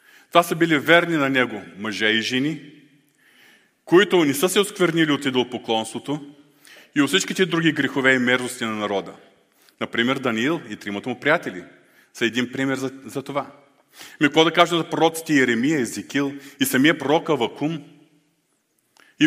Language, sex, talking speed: Bulgarian, male, 155 wpm